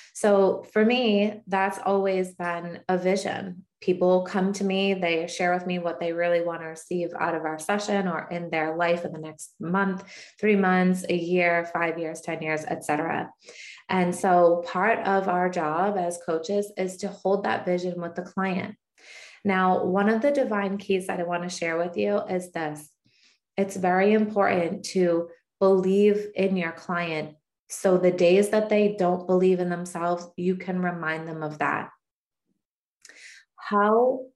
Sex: female